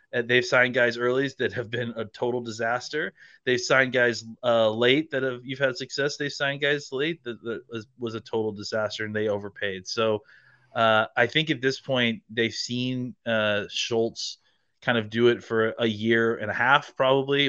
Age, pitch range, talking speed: 30-49, 115-135 Hz, 190 wpm